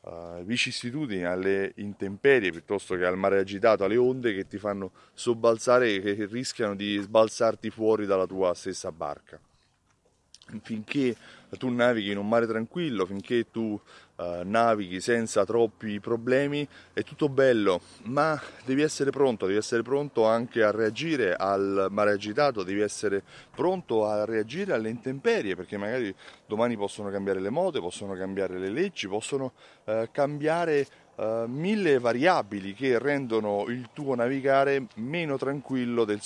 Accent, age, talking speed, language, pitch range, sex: native, 30-49, 140 wpm, Italian, 100-135 Hz, male